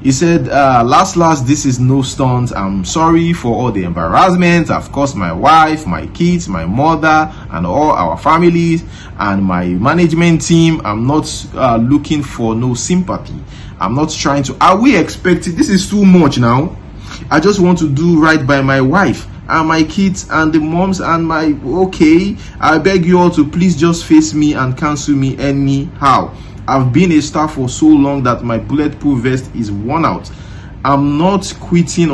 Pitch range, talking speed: 110-155 Hz, 185 wpm